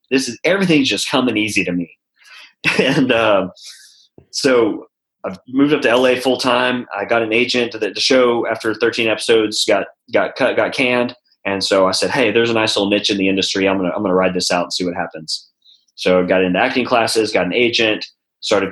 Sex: male